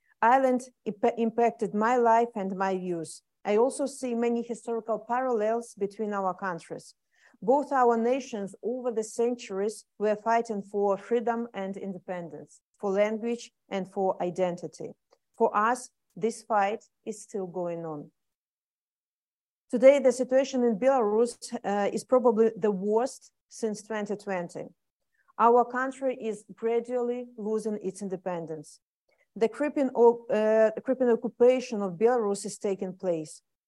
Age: 40-59